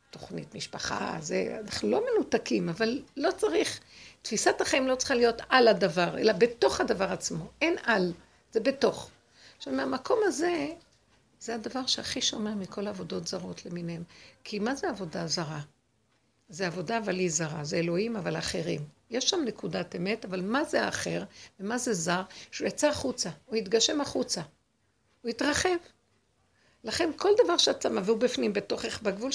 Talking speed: 155 wpm